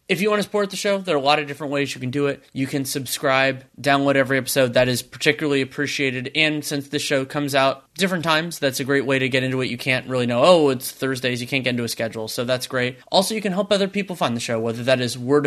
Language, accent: English, American